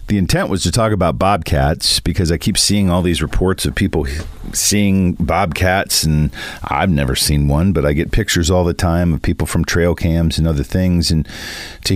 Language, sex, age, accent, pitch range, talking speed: English, male, 50-69, American, 80-95 Hz, 200 wpm